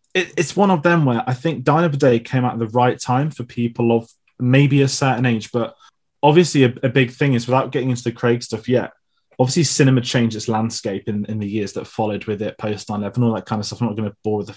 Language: English